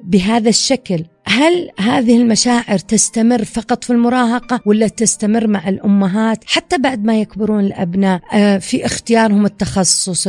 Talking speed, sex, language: 120 wpm, female, Arabic